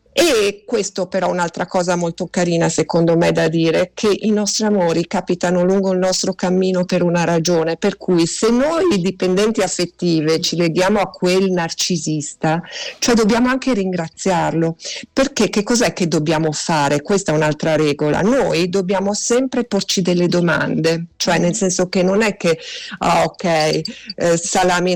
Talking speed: 150 wpm